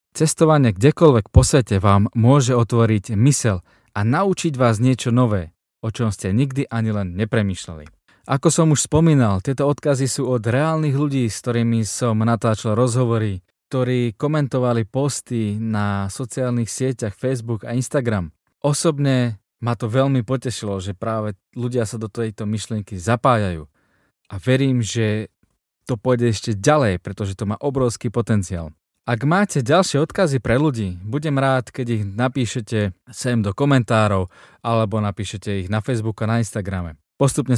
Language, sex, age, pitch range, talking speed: Slovak, male, 20-39, 105-130 Hz, 145 wpm